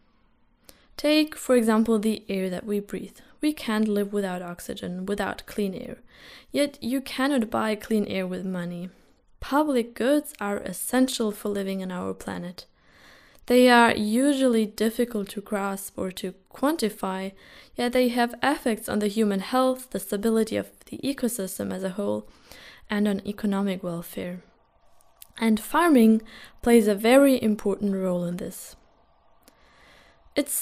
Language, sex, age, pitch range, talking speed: English, female, 10-29, 195-245 Hz, 140 wpm